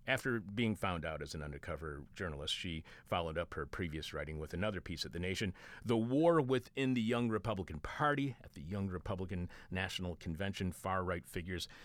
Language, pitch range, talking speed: English, 90-120 Hz, 180 wpm